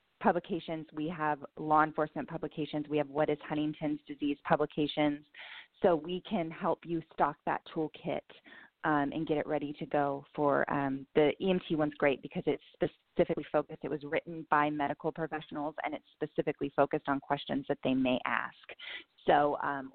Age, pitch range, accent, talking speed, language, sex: 20-39, 145-160 Hz, American, 170 wpm, English, female